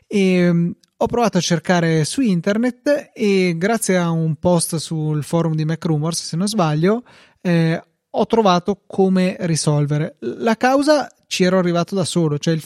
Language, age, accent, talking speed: Italian, 20-39, native, 150 wpm